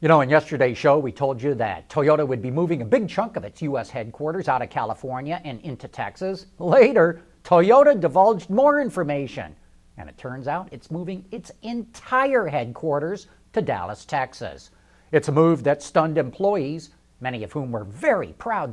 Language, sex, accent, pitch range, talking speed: English, male, American, 130-190 Hz, 175 wpm